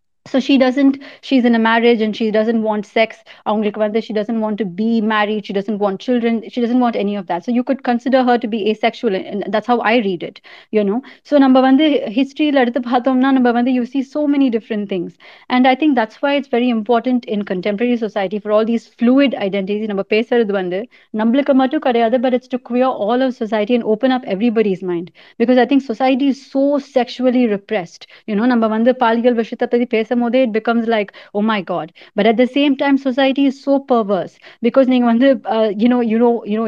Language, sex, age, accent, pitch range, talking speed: Tamil, female, 30-49, native, 215-260 Hz, 225 wpm